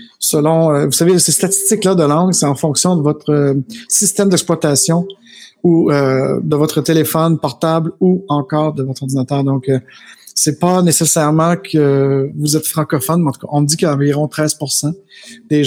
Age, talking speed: 50-69, 190 wpm